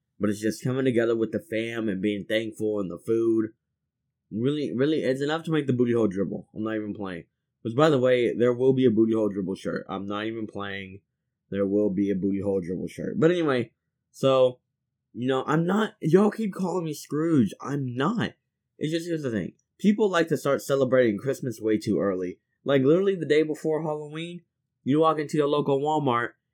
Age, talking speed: 20-39, 210 wpm